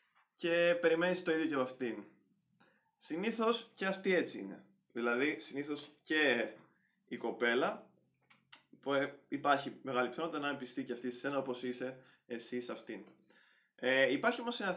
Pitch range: 120-145 Hz